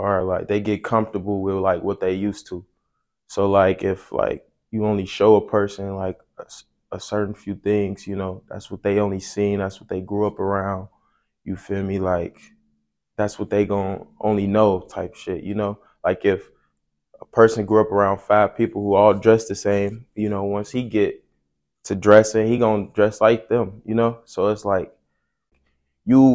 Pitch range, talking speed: 95-110 Hz, 195 wpm